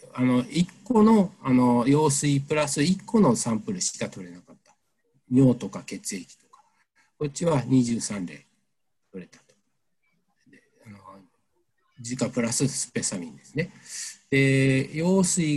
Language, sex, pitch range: Japanese, male, 120-150 Hz